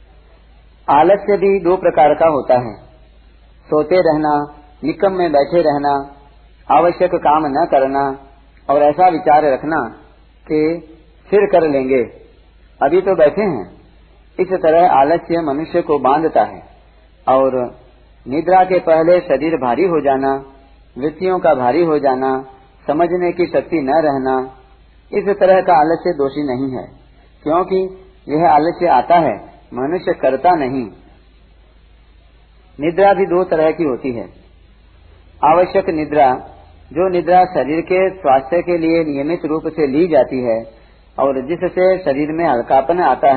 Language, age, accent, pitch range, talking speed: Hindi, 40-59, native, 125-175 Hz, 135 wpm